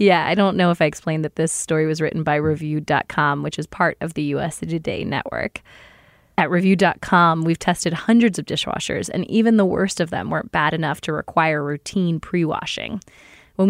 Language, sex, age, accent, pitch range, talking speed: English, female, 20-39, American, 165-200 Hz, 190 wpm